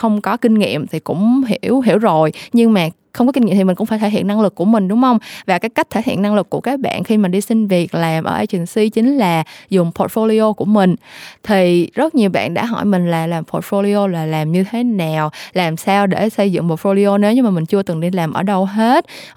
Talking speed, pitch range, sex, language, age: 260 wpm, 180-230 Hz, female, Vietnamese, 20-39